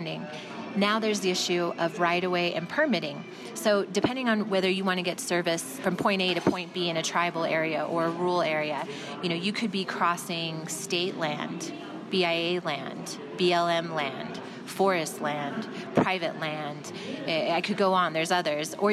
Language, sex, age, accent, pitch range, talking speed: English, female, 30-49, American, 170-195 Hz, 175 wpm